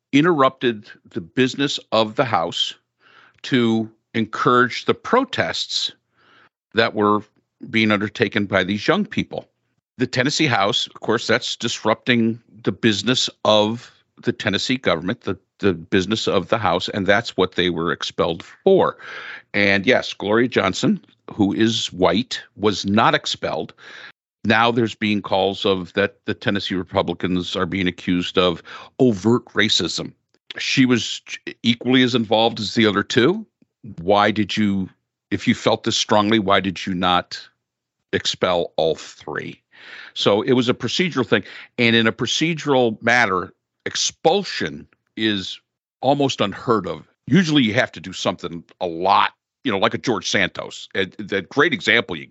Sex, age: male, 50-69